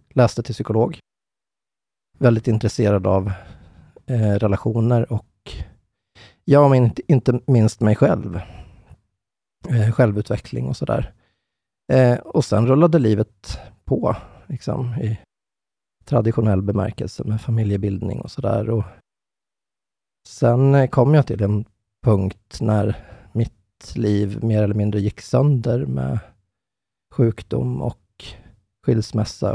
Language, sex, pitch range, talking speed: English, male, 100-120 Hz, 110 wpm